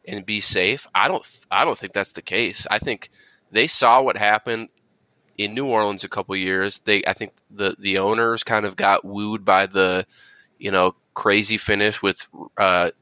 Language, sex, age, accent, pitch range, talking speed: English, male, 20-39, American, 100-120 Hz, 190 wpm